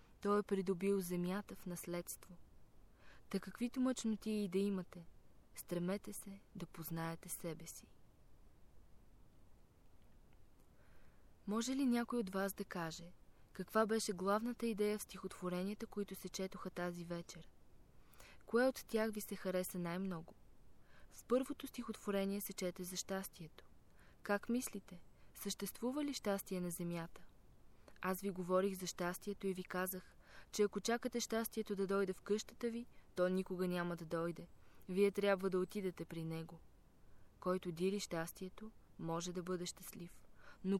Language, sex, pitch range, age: Bulgarian, female, 175-205 Hz, 20-39